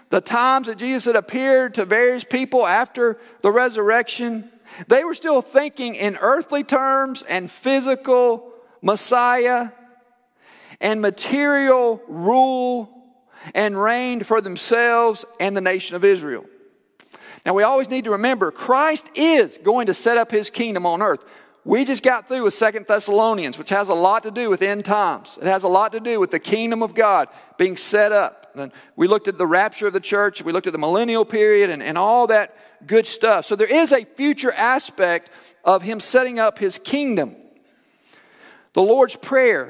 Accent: American